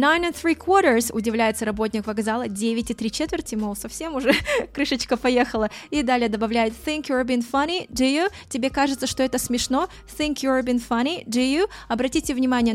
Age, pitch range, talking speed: 20-39, 220-270 Hz, 180 wpm